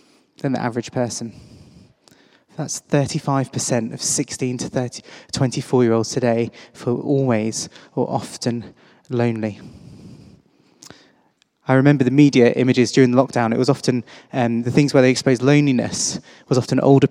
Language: English